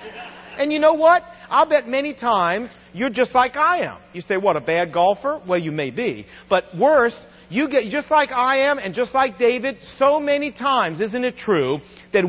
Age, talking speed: 50-69, 205 wpm